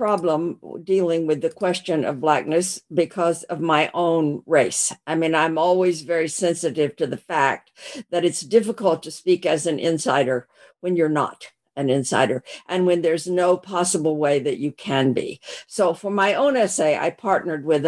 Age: 60-79